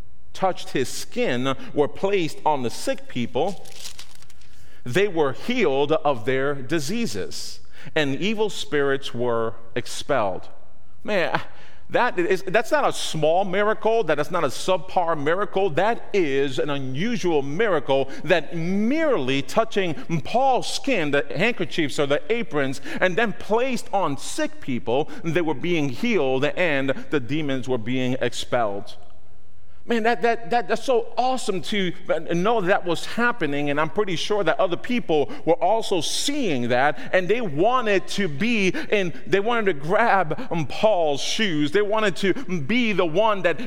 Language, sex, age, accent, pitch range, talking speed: English, male, 40-59, American, 140-215 Hz, 150 wpm